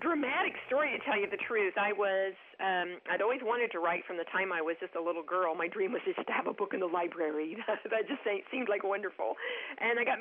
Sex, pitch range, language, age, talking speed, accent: female, 180-225 Hz, English, 40-59, 255 wpm, American